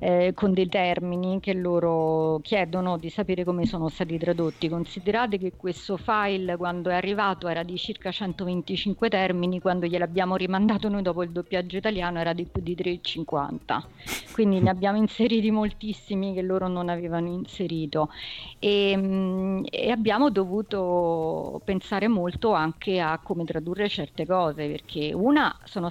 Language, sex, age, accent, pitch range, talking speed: Italian, female, 40-59, native, 175-200 Hz, 145 wpm